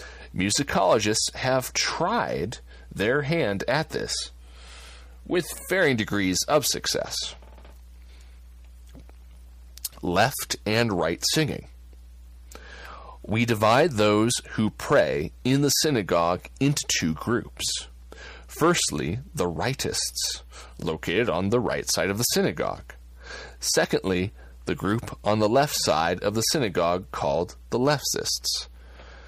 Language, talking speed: English, 105 wpm